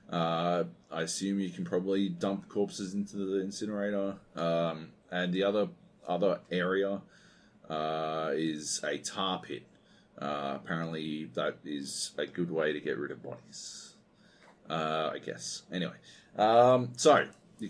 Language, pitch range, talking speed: English, 85-105 Hz, 140 wpm